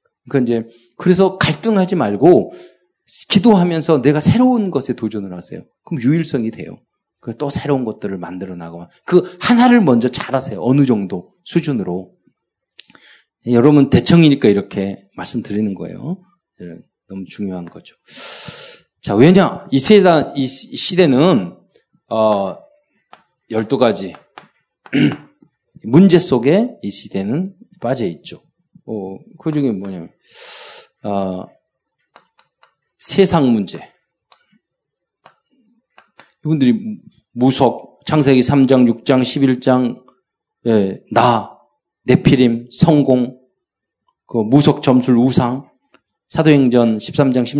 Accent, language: native, Korean